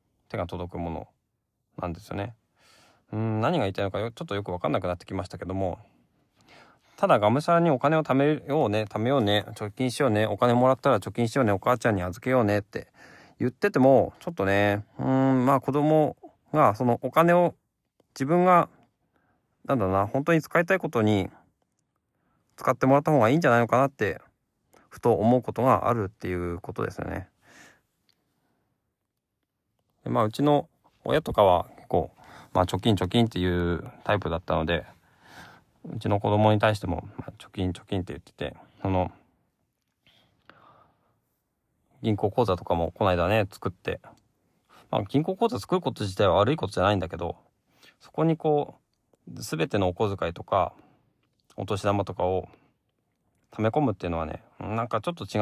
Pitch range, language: 95-135 Hz, Japanese